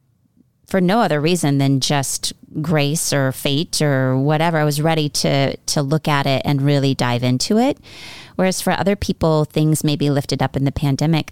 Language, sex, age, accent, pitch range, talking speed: English, female, 30-49, American, 135-185 Hz, 190 wpm